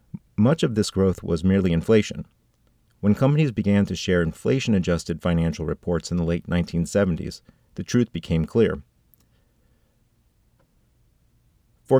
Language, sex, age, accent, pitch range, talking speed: English, male, 40-59, American, 85-110 Hz, 120 wpm